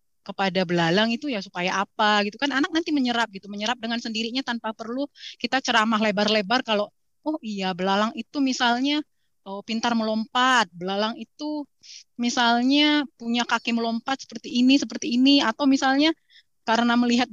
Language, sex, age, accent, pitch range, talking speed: Indonesian, female, 20-39, native, 210-260 Hz, 150 wpm